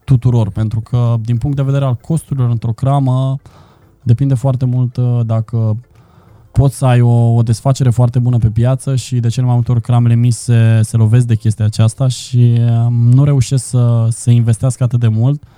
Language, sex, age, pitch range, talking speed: Romanian, male, 20-39, 110-125 Hz, 185 wpm